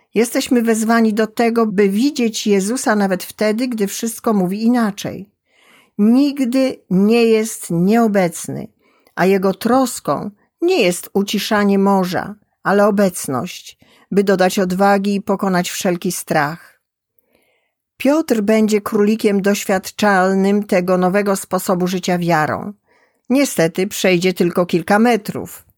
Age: 50-69